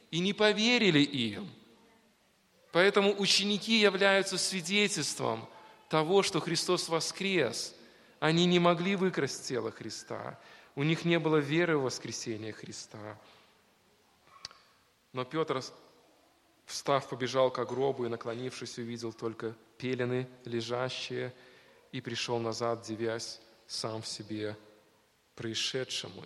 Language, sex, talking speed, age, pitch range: Russian, male, 105 wpm, 20-39, 115-150 Hz